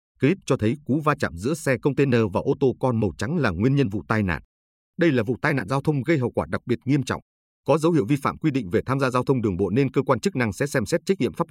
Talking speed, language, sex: 315 wpm, Vietnamese, male